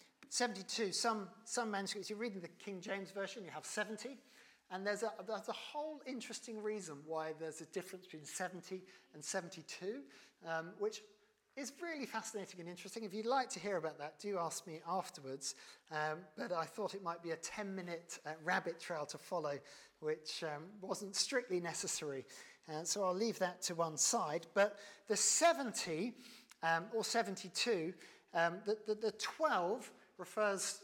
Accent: British